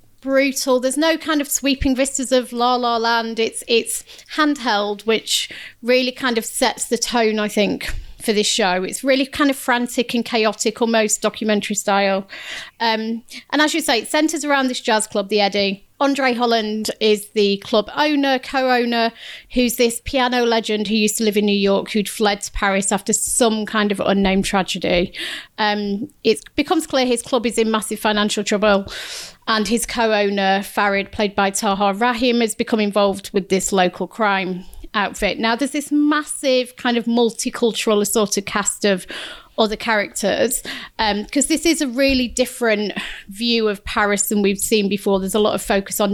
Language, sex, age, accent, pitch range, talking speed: English, female, 30-49, British, 205-255 Hz, 180 wpm